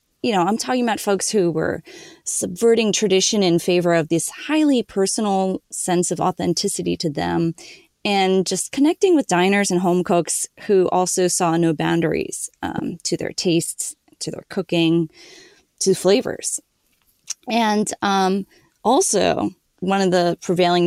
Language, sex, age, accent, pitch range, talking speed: English, female, 20-39, American, 170-205 Hz, 145 wpm